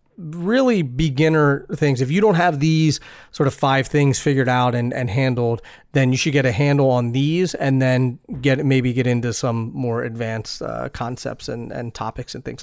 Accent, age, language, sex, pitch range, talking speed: American, 30-49, English, male, 125-150 Hz, 195 wpm